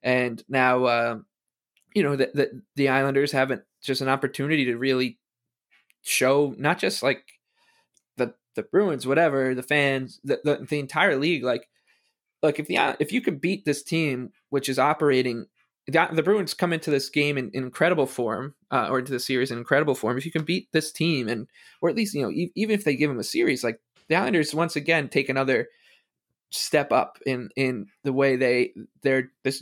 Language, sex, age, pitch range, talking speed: English, male, 20-39, 125-150 Hz, 205 wpm